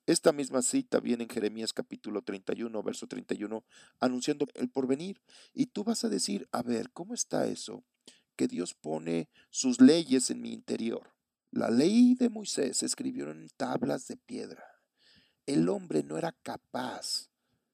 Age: 50-69